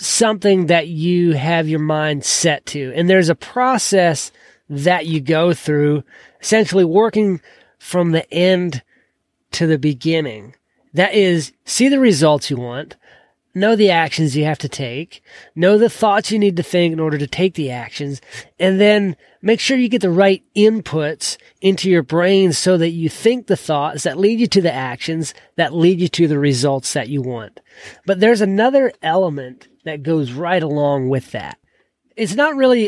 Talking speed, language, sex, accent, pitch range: 175 wpm, English, male, American, 150-195 Hz